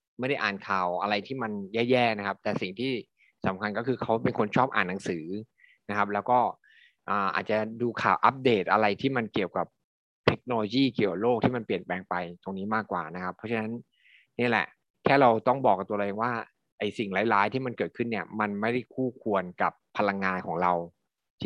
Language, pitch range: Thai, 100-125 Hz